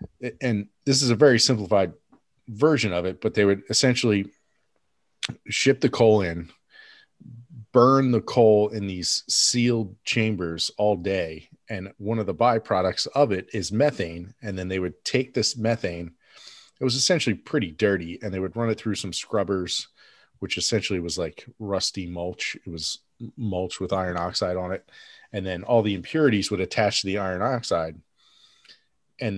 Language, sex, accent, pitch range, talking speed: English, male, American, 95-115 Hz, 165 wpm